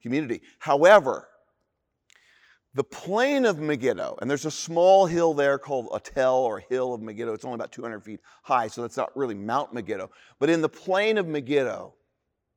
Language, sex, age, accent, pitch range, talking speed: English, male, 40-59, American, 130-180 Hz, 170 wpm